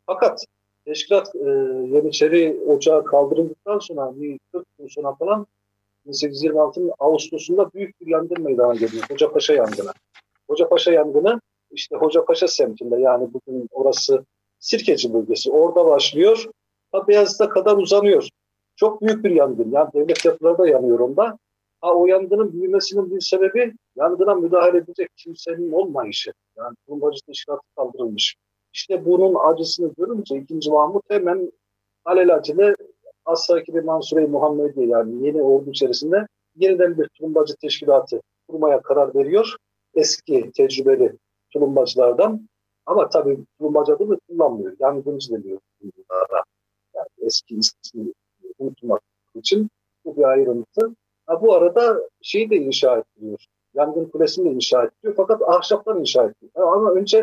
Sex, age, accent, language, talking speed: male, 50-69, native, Turkish, 130 wpm